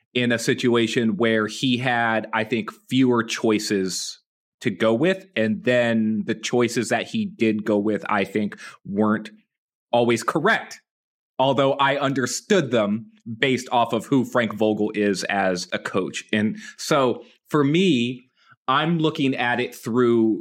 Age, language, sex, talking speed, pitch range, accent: 30-49, English, male, 145 wpm, 110-135 Hz, American